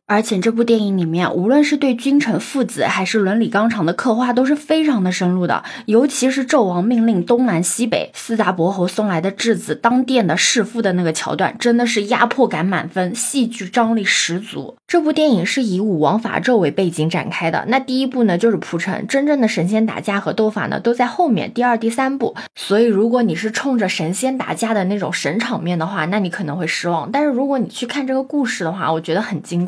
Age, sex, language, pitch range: 20-39, female, Chinese, 185-245 Hz